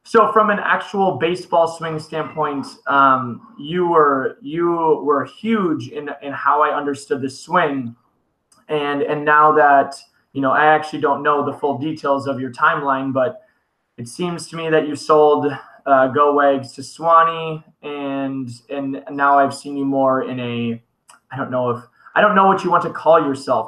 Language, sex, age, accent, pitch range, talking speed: English, male, 20-39, American, 135-160 Hz, 180 wpm